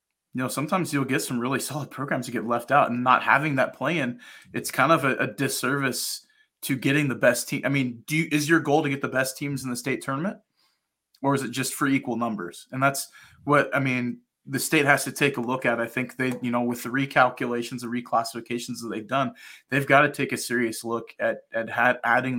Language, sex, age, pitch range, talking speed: English, male, 20-39, 120-135 Hz, 235 wpm